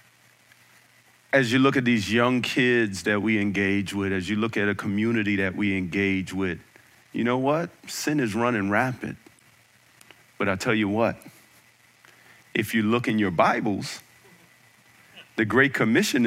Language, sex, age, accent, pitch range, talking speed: English, male, 40-59, American, 105-140 Hz, 155 wpm